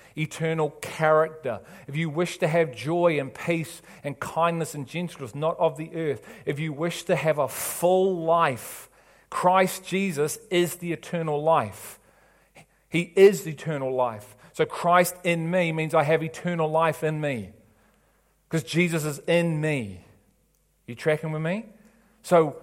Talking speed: 155 wpm